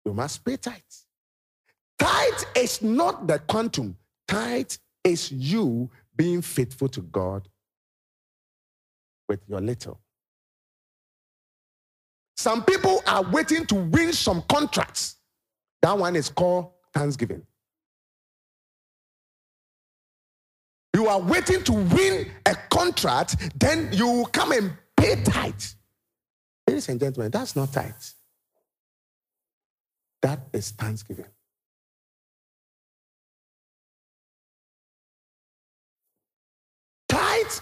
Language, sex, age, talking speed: English, male, 40-59, 90 wpm